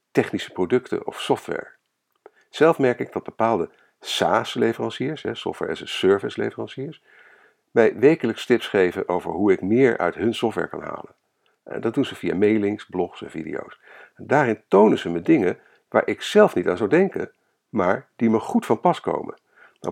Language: Dutch